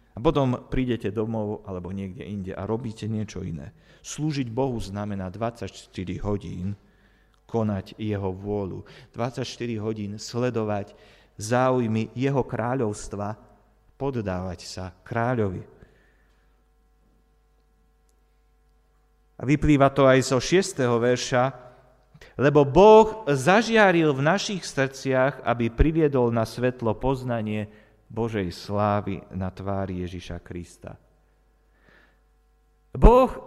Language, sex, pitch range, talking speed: Slovak, male, 105-150 Hz, 95 wpm